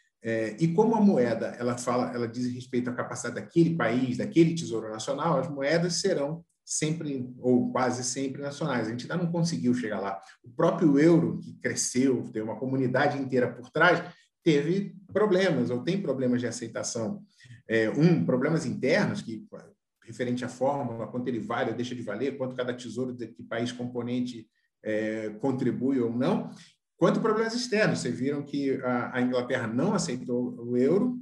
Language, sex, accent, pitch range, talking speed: Portuguese, male, Brazilian, 125-175 Hz, 170 wpm